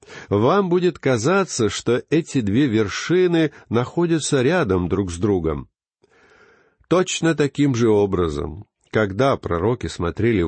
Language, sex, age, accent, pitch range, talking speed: Russian, male, 50-69, native, 100-145 Hz, 110 wpm